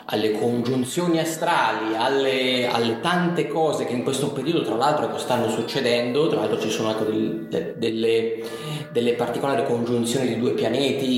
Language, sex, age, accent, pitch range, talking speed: Italian, male, 30-49, native, 110-130 Hz, 155 wpm